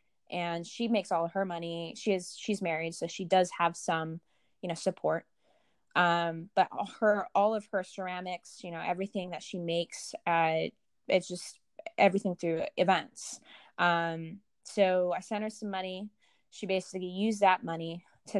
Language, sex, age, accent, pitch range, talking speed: English, female, 20-39, American, 165-195 Hz, 165 wpm